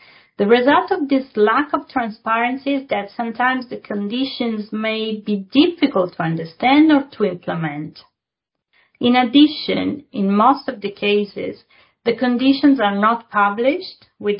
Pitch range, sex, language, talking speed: 185-250 Hz, female, English, 140 wpm